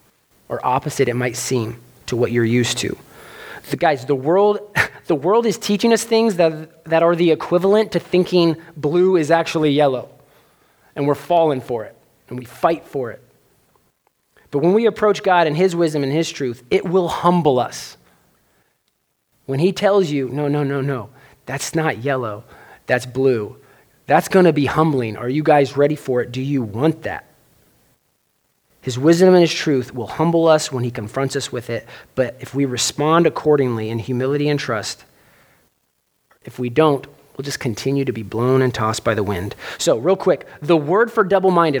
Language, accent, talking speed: English, American, 185 wpm